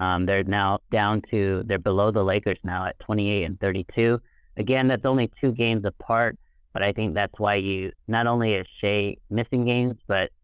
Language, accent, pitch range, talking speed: English, American, 95-110 Hz, 190 wpm